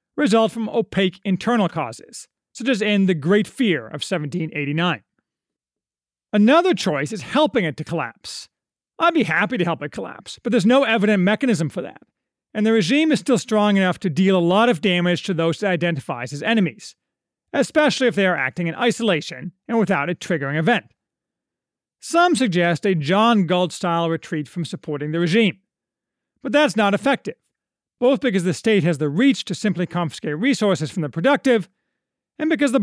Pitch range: 170-235 Hz